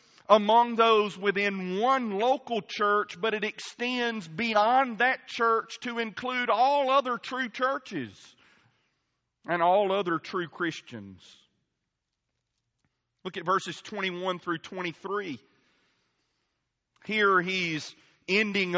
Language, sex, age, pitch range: English, male, 40-59, 170-215 Hz